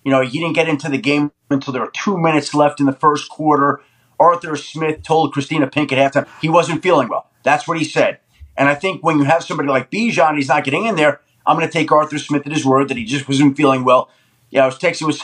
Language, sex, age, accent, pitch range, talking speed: English, male, 30-49, American, 135-175 Hz, 265 wpm